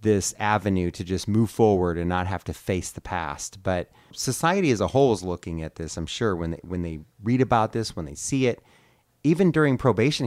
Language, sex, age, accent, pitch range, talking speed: English, male, 30-49, American, 95-130 Hz, 220 wpm